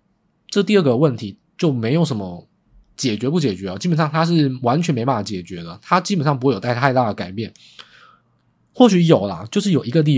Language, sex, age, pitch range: Chinese, male, 20-39, 110-165 Hz